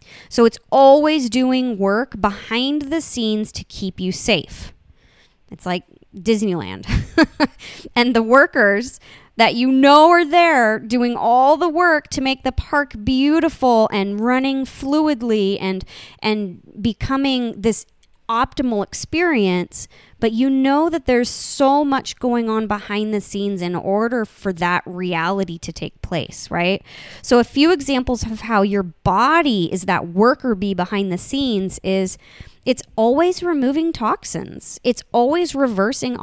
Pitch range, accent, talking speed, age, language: 195-270 Hz, American, 140 wpm, 20-39, English